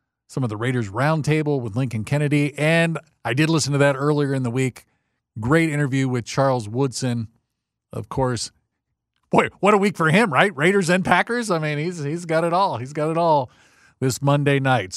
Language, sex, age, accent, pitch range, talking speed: English, male, 40-59, American, 125-160 Hz, 195 wpm